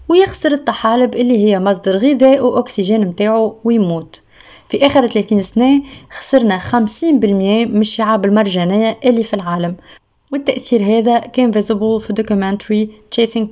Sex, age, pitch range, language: female, 20-39, 205-250 Hz, Arabic